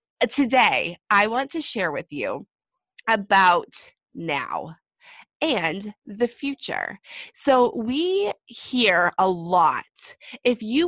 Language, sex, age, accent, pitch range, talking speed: English, female, 20-39, American, 185-260 Hz, 105 wpm